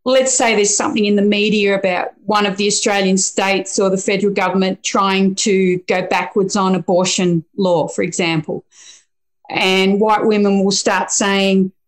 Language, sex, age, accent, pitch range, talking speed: English, female, 40-59, Australian, 185-215 Hz, 160 wpm